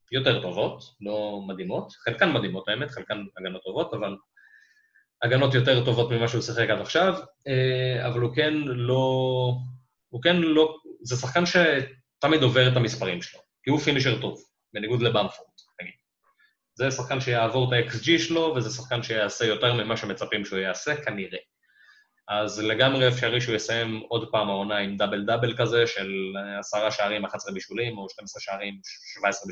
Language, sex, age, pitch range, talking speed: Hebrew, male, 20-39, 105-130 Hz, 155 wpm